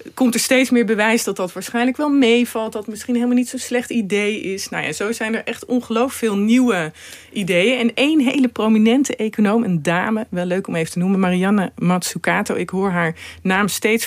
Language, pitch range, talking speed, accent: Dutch, 180-235 Hz, 210 wpm, Dutch